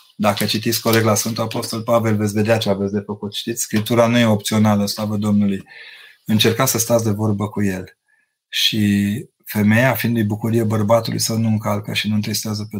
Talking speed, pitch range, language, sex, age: 185 wpm, 105-125 Hz, Romanian, male, 30-49